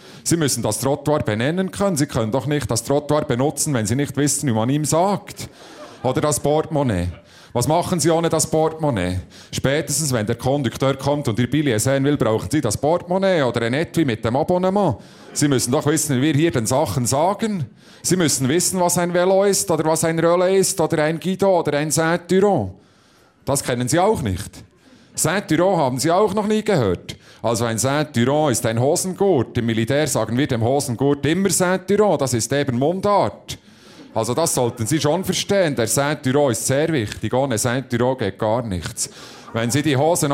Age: 40-59